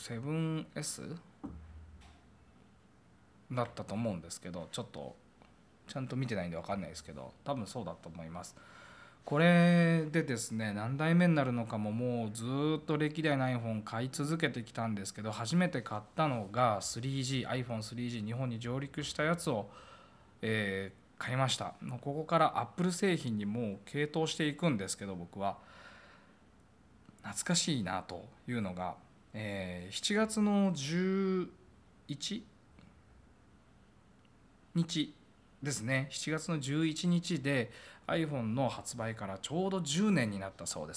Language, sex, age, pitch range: Japanese, male, 20-39, 100-160 Hz